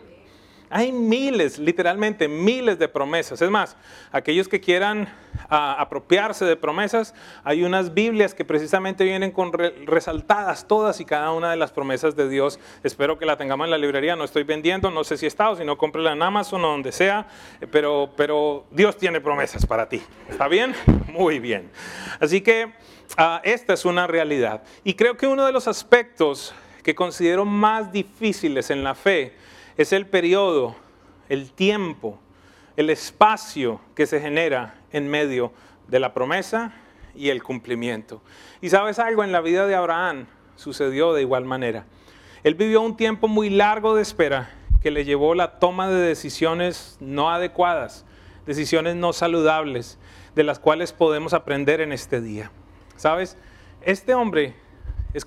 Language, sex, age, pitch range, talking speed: English, male, 30-49, 145-195 Hz, 165 wpm